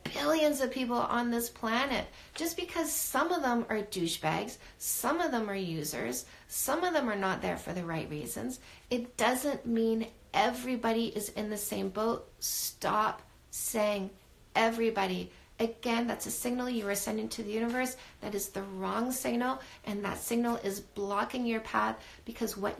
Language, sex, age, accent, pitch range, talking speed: English, female, 40-59, American, 215-270 Hz, 170 wpm